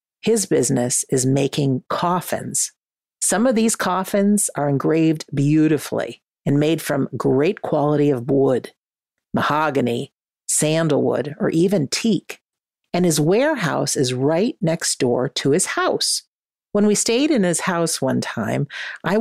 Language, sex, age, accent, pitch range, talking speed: English, female, 50-69, American, 145-225 Hz, 135 wpm